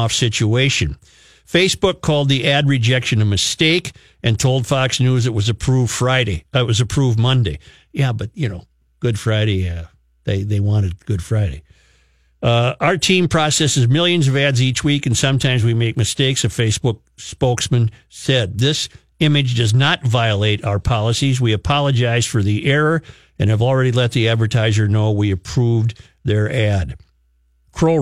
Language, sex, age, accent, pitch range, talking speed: English, male, 50-69, American, 100-130 Hz, 160 wpm